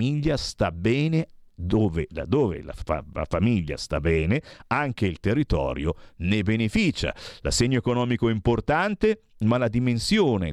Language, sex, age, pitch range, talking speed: Italian, male, 50-69, 95-130 Hz, 130 wpm